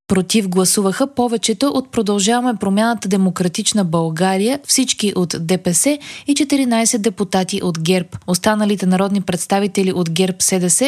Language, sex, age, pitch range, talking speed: Bulgarian, female, 20-39, 190-245 Hz, 120 wpm